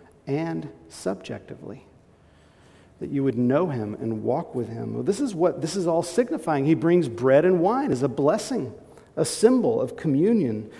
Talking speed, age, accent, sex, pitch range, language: 165 wpm, 50-69, American, male, 115-155 Hz, English